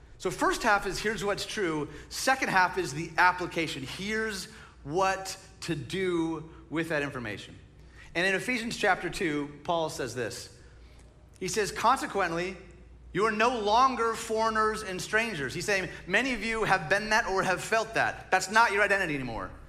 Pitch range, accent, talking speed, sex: 155-210 Hz, American, 165 wpm, male